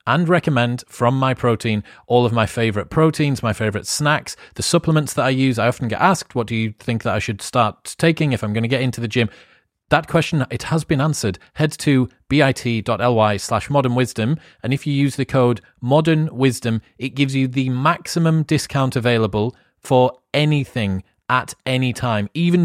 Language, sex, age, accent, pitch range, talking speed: English, male, 30-49, British, 110-140 Hz, 185 wpm